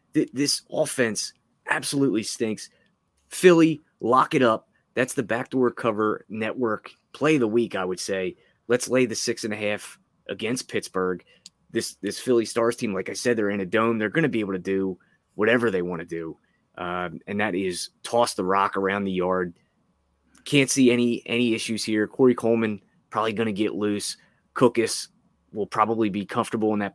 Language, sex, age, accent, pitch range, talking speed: English, male, 20-39, American, 100-125 Hz, 185 wpm